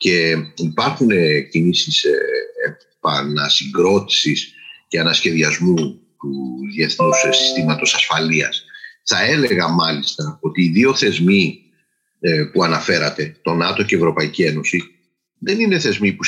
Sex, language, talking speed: male, Greek, 105 wpm